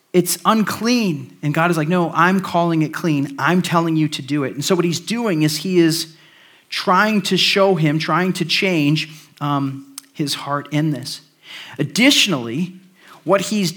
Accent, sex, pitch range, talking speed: American, male, 150-185 Hz, 175 wpm